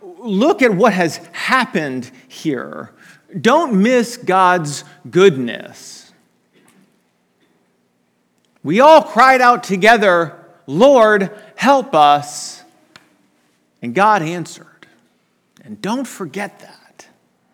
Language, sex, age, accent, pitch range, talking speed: English, male, 40-59, American, 130-205 Hz, 85 wpm